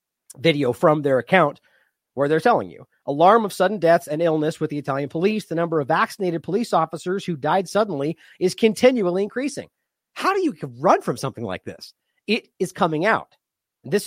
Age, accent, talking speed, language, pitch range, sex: 40-59, American, 185 wpm, English, 140-185 Hz, male